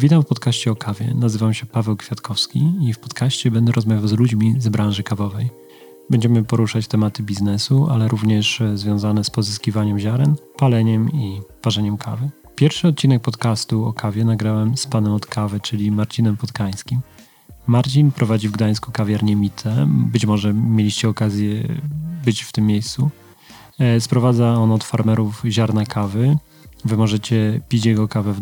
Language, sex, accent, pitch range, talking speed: Polish, male, native, 105-125 Hz, 150 wpm